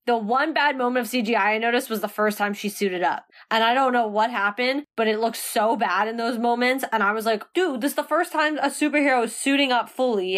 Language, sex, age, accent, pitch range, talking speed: English, female, 10-29, American, 215-270 Hz, 260 wpm